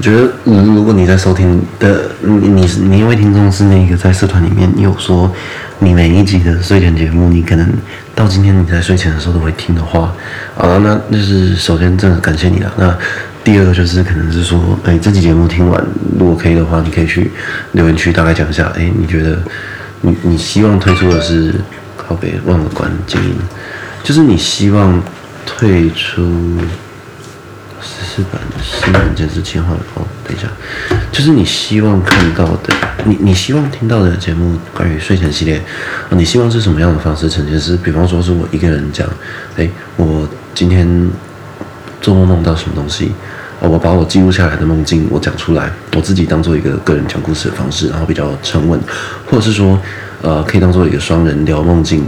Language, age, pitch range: Chinese, 30-49, 85-100 Hz